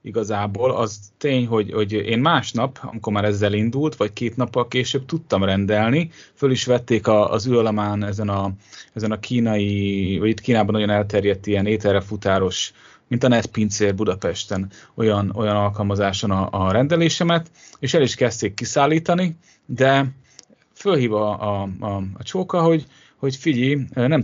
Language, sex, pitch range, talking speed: Hungarian, male, 100-125 Hz, 150 wpm